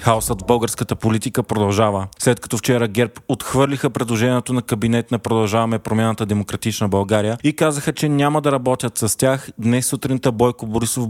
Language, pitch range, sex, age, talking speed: Bulgarian, 110-130 Hz, male, 30-49, 160 wpm